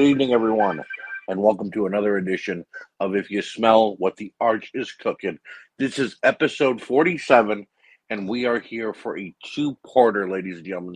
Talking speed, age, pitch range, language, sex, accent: 170 wpm, 50-69, 95-110 Hz, English, male, American